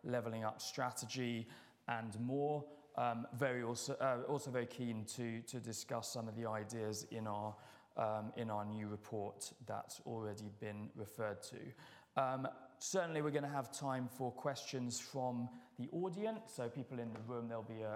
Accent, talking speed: British, 170 wpm